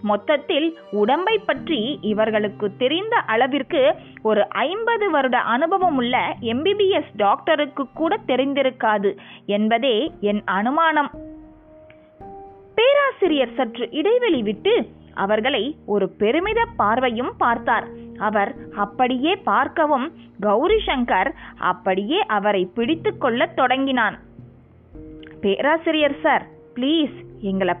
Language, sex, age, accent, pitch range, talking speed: Tamil, female, 20-39, native, 210-315 Hz, 85 wpm